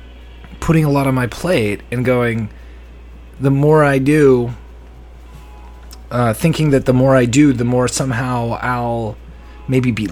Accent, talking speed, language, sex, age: American, 150 wpm, English, male, 30-49